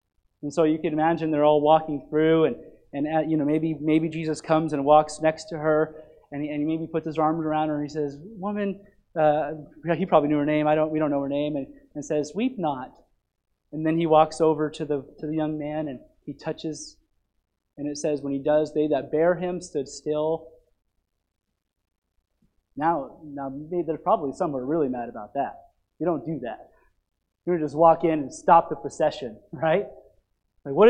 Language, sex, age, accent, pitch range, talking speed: English, male, 30-49, American, 150-225 Hz, 205 wpm